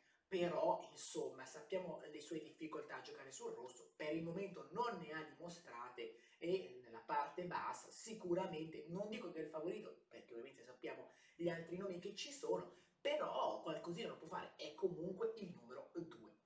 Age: 30-49